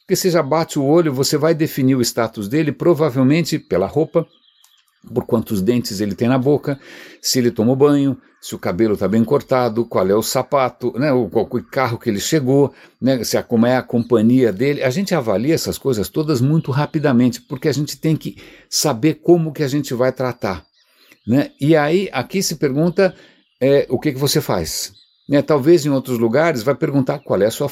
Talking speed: 205 wpm